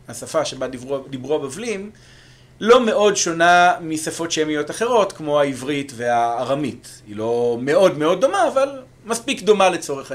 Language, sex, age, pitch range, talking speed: Hebrew, male, 40-59, 125-200 Hz, 130 wpm